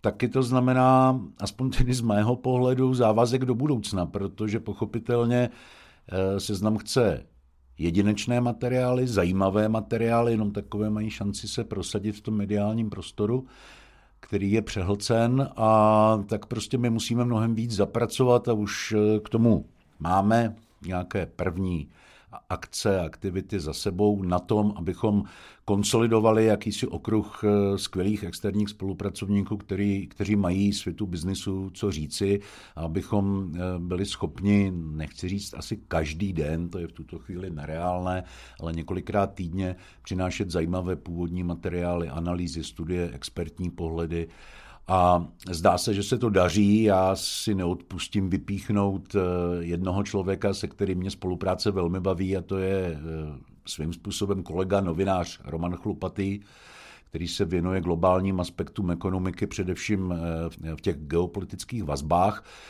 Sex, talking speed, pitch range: male, 125 wpm, 90-105 Hz